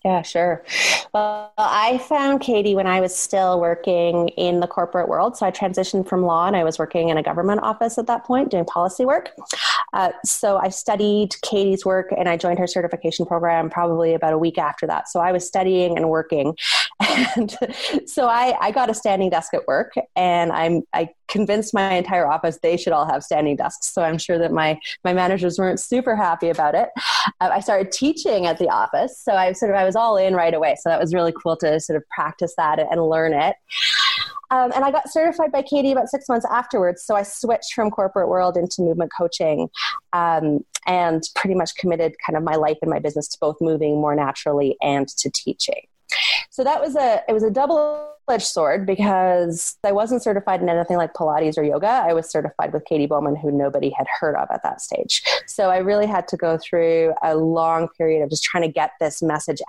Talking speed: 215 wpm